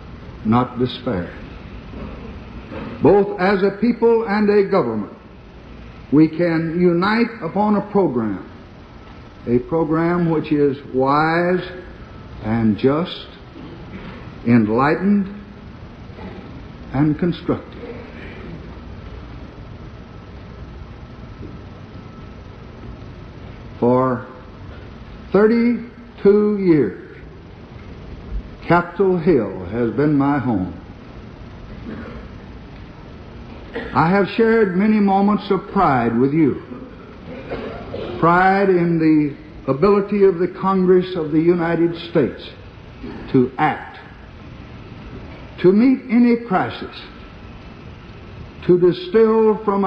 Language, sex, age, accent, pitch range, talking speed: English, male, 60-79, American, 120-195 Hz, 75 wpm